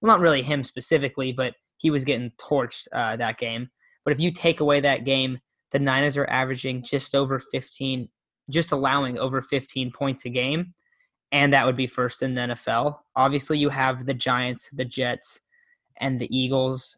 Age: 10-29